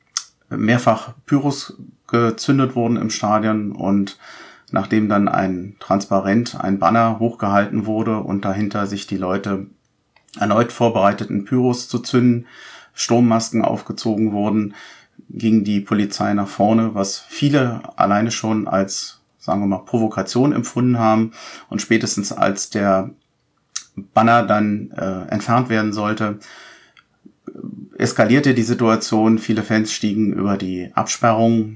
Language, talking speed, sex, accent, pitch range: German, 120 wpm, male, German, 100-115 Hz